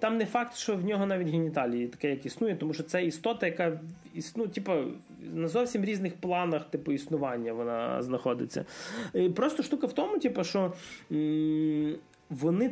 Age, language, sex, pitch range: 20-39, Ukrainian, male, 145-195 Hz